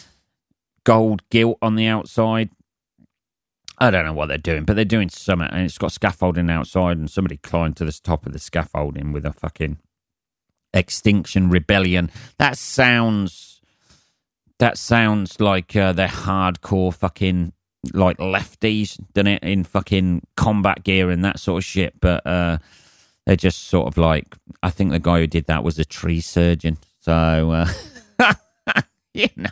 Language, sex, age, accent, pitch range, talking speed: English, male, 40-59, British, 85-105 Hz, 155 wpm